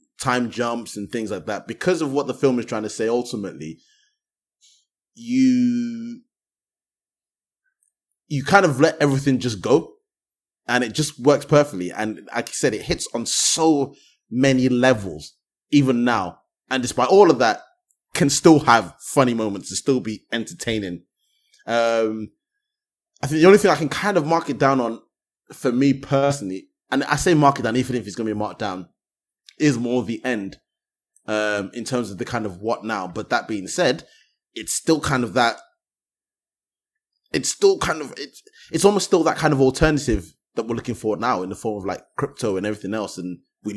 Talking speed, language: 185 wpm, English